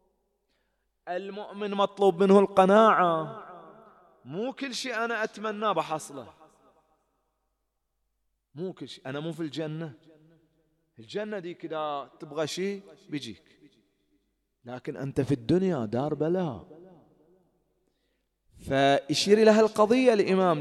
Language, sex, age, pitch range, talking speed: English, male, 30-49, 155-210 Hz, 95 wpm